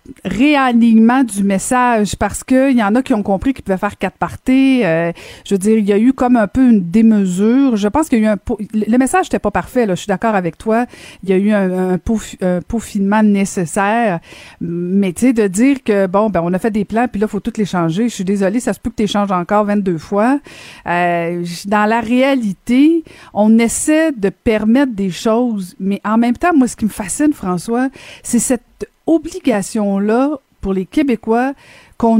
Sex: female